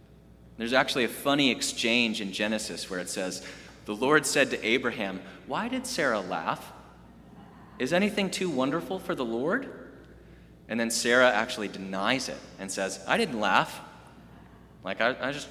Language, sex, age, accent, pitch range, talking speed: English, male, 30-49, American, 90-150 Hz, 160 wpm